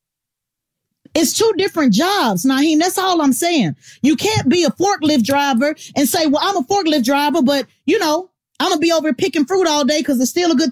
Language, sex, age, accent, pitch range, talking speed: English, female, 30-49, American, 275-385 Hz, 215 wpm